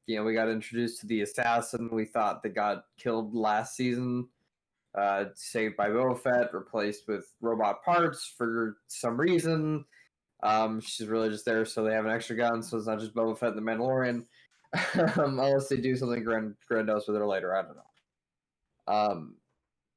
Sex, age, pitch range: male, 20-39, 110-130 Hz